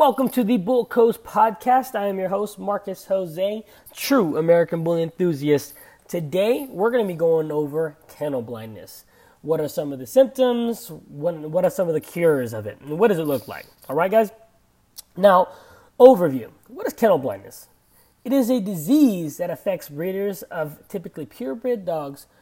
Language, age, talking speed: English, 20-39, 175 wpm